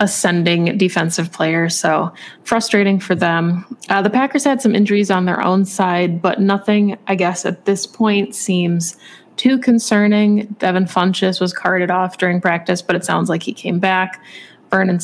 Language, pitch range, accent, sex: English, 175-200 Hz, American, female